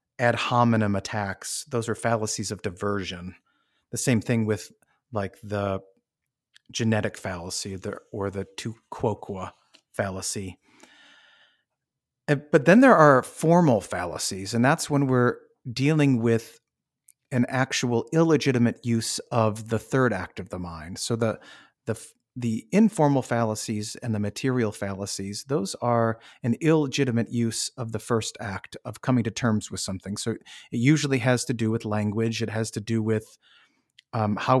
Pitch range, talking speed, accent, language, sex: 105-125 Hz, 150 wpm, American, English, male